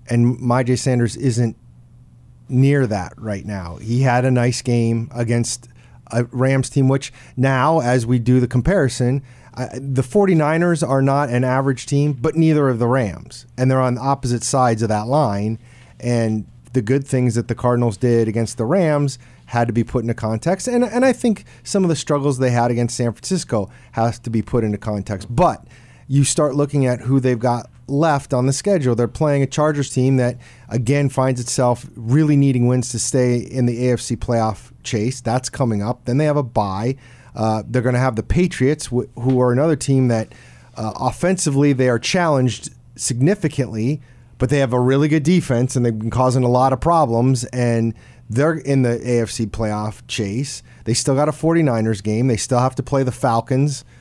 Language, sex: English, male